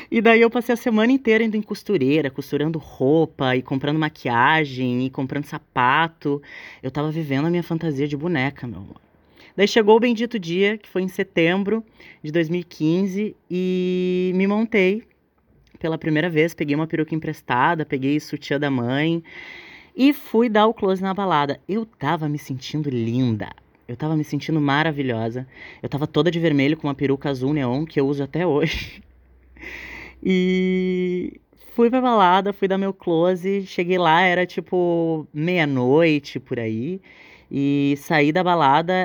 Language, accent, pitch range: Portuguese, Brazilian, 140-185 Hz